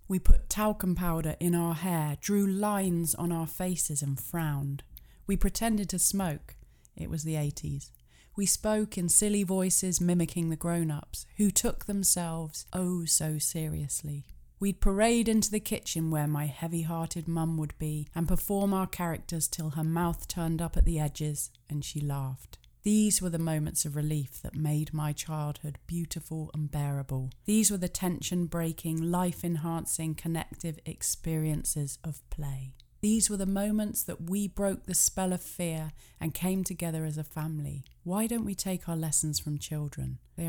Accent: British